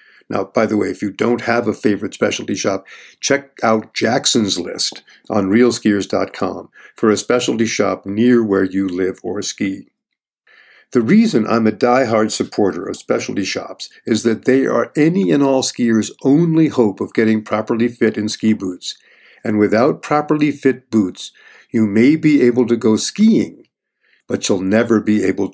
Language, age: English, 50-69